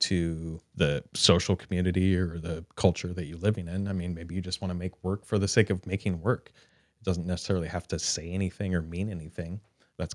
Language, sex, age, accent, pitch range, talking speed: English, male, 30-49, American, 85-115 Hz, 220 wpm